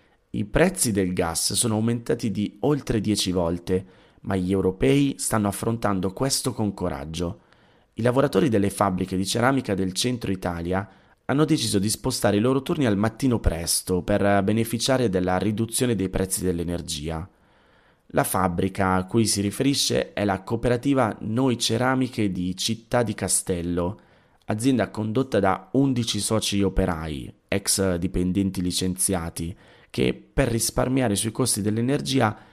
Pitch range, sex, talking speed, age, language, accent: 95-120 Hz, male, 135 wpm, 30-49, Italian, native